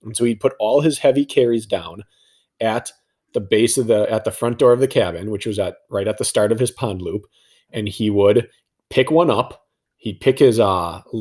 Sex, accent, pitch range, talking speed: male, American, 105-140 Hz, 225 wpm